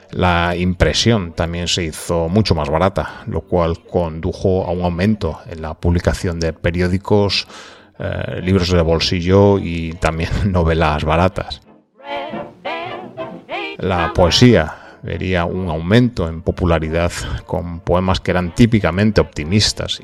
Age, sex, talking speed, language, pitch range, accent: 30-49, male, 120 wpm, Spanish, 85-100 Hz, Spanish